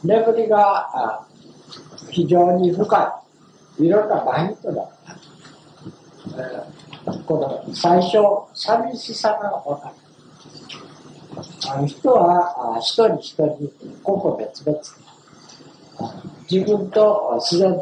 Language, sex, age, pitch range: Japanese, male, 60-79, 155-210 Hz